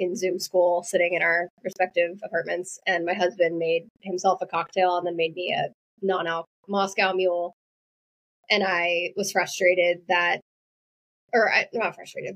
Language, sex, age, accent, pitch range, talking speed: English, female, 10-29, American, 180-215 Hz, 160 wpm